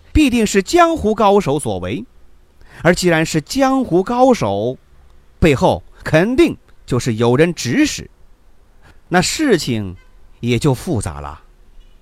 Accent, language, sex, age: native, Chinese, male, 30-49